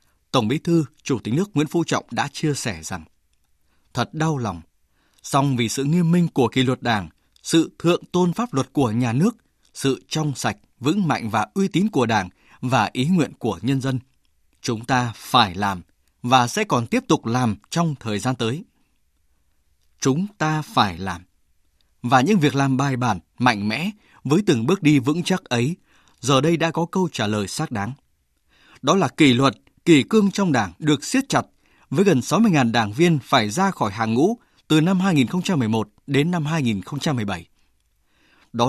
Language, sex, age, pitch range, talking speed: Vietnamese, male, 20-39, 110-165 Hz, 185 wpm